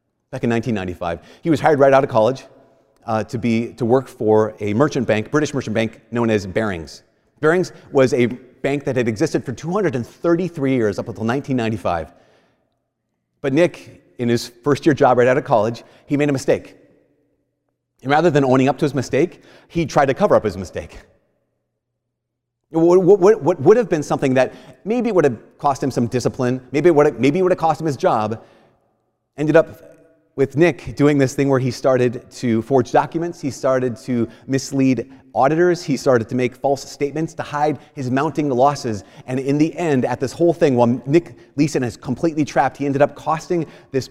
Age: 30-49